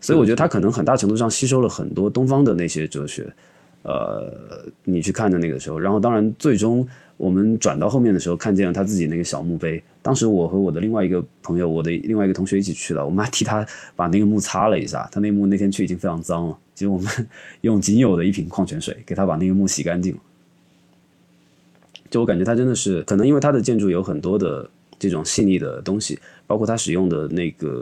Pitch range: 85-105 Hz